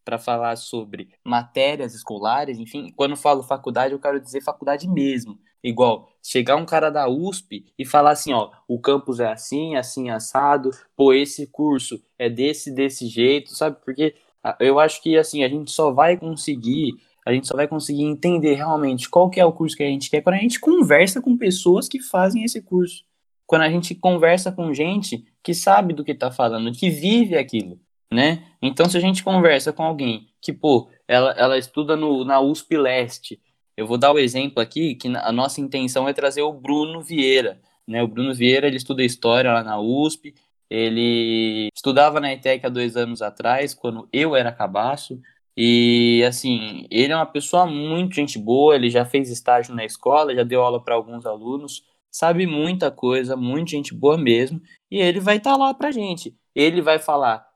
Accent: Brazilian